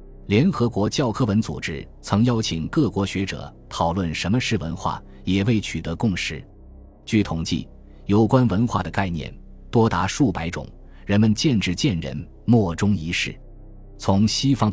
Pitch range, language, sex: 80-115 Hz, Chinese, male